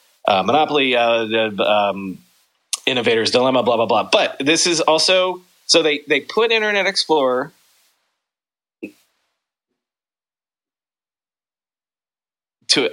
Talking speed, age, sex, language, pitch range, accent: 95 wpm, 30-49, male, English, 125-160 Hz, American